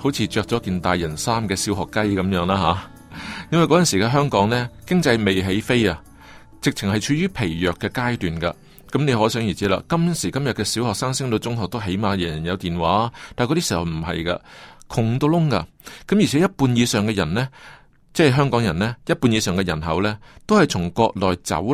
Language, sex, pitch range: Chinese, male, 95-140 Hz